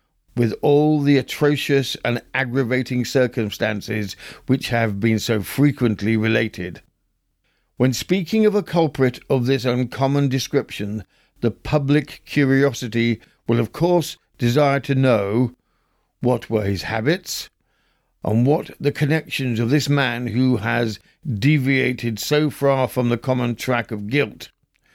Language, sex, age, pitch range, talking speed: English, male, 50-69, 115-145 Hz, 125 wpm